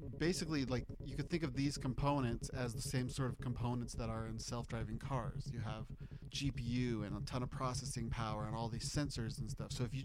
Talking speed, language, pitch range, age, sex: 220 wpm, English, 120-155 Hz, 30-49, male